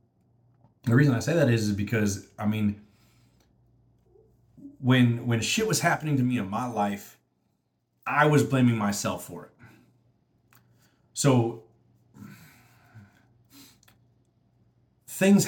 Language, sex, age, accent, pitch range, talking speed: English, male, 40-59, American, 105-120 Hz, 110 wpm